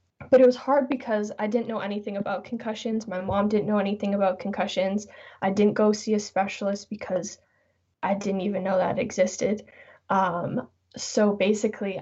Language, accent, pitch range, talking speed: English, American, 185-215 Hz, 170 wpm